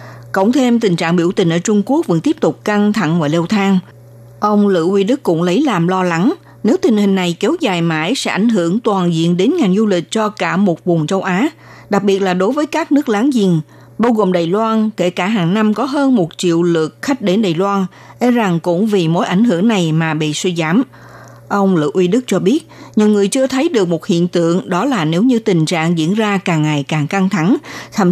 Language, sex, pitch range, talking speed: Vietnamese, female, 170-225 Hz, 245 wpm